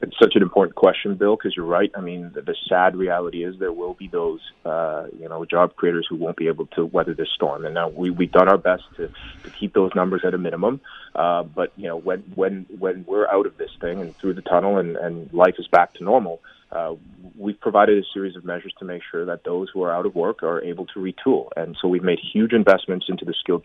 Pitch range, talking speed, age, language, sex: 90-95 Hz, 255 wpm, 30-49, English, male